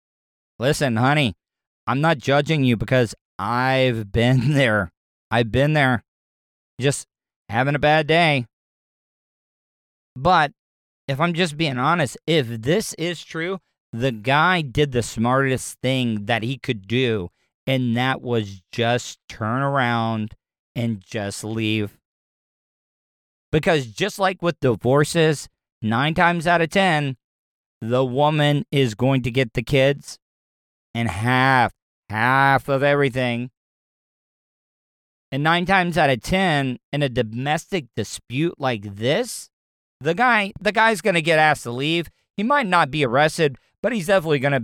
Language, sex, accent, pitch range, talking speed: English, male, American, 115-150 Hz, 135 wpm